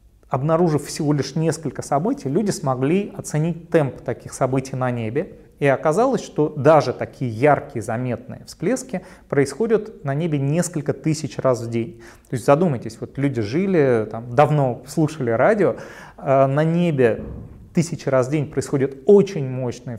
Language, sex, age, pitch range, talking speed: Russian, male, 30-49, 125-165 Hz, 145 wpm